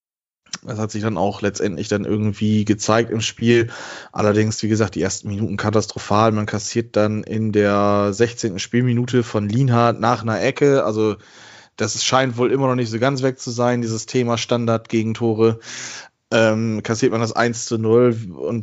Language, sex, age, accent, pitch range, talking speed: German, male, 20-39, German, 105-120 Hz, 175 wpm